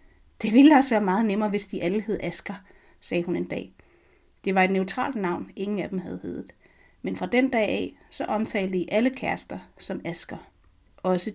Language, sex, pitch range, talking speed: Danish, female, 190-235 Hz, 200 wpm